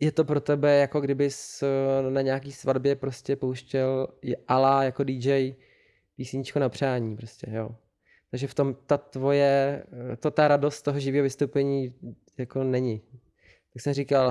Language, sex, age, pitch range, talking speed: Czech, male, 20-39, 125-140 Hz, 145 wpm